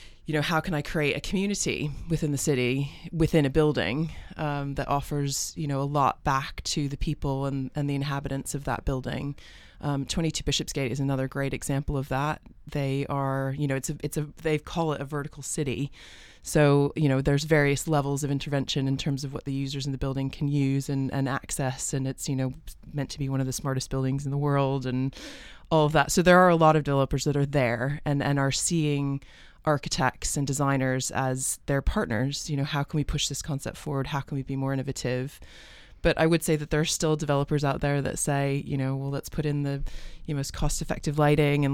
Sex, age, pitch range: female, 20-39, 135-150 Hz